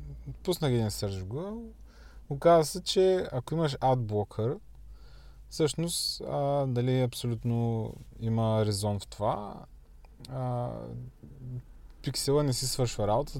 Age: 20-39